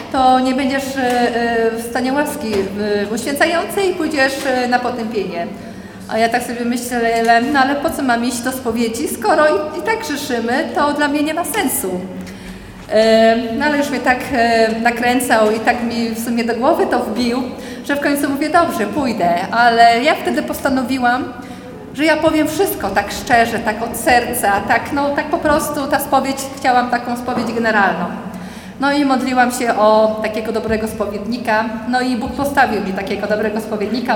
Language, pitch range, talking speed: Polish, 220-260 Hz, 170 wpm